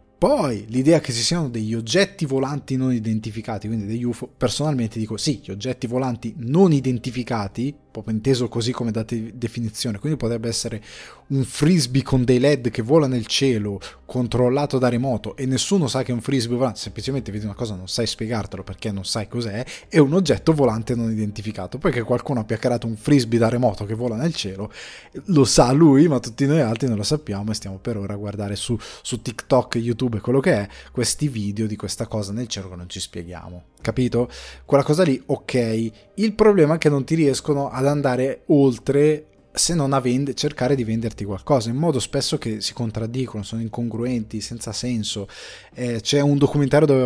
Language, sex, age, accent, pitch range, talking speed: Italian, male, 20-39, native, 110-140 Hz, 195 wpm